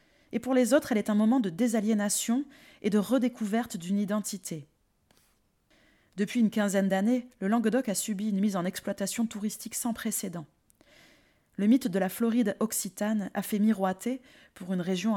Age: 20-39